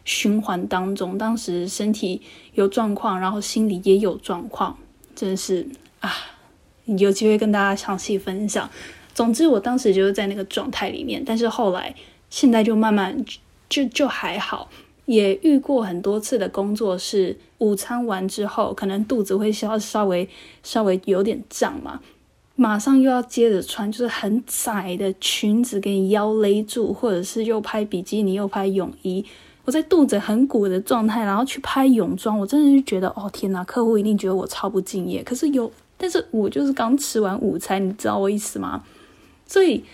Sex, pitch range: female, 195-245 Hz